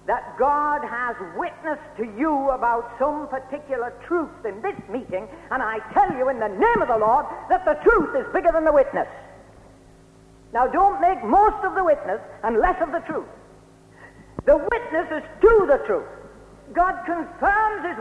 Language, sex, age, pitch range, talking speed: English, female, 60-79, 245-340 Hz, 175 wpm